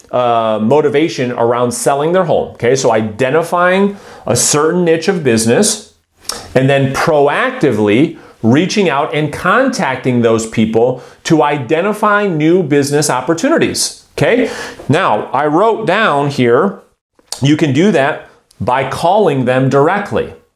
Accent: American